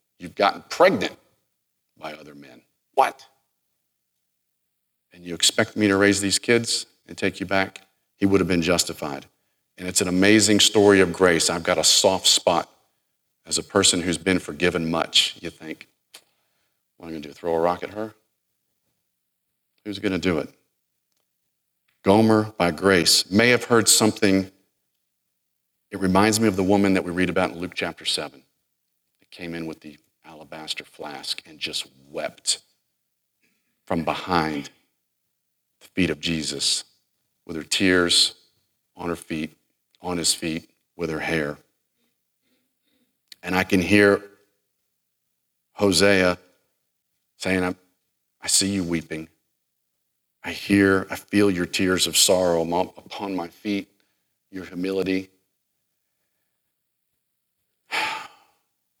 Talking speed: 135 wpm